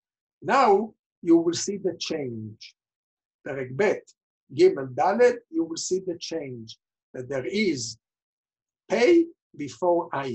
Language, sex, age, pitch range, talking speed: English, male, 60-79, 130-200 Hz, 115 wpm